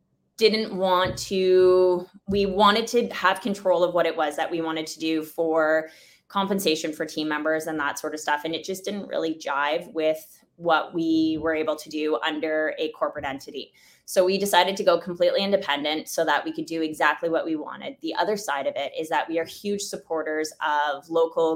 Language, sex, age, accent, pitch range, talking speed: English, female, 20-39, American, 155-180 Hz, 205 wpm